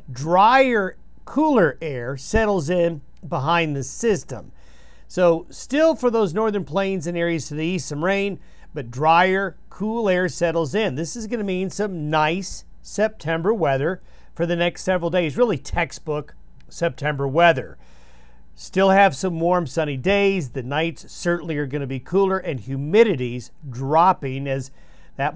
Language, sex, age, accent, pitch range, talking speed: English, male, 50-69, American, 140-190 Hz, 150 wpm